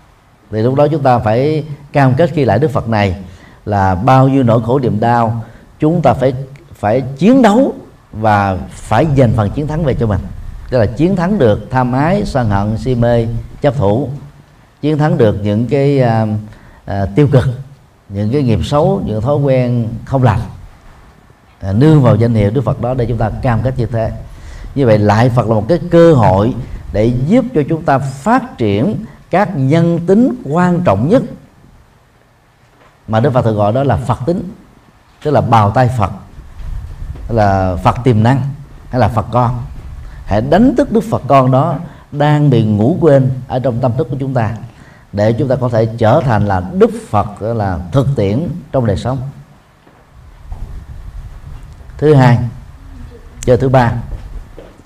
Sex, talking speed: male, 180 wpm